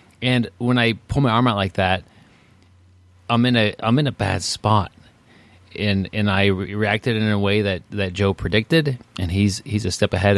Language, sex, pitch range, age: English, male, 95-115 Hz, 30-49